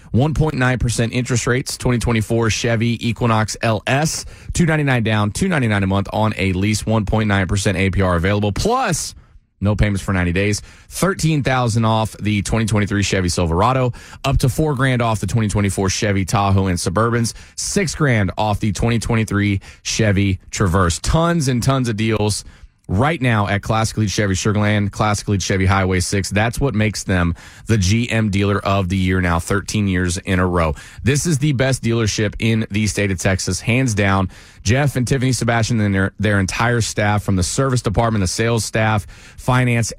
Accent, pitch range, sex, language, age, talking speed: American, 95-115 Hz, male, English, 30-49, 165 wpm